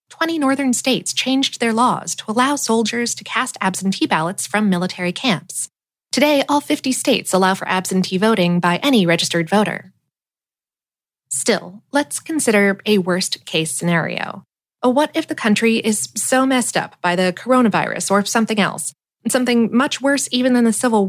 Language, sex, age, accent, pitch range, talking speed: English, female, 20-39, American, 180-250 Hz, 155 wpm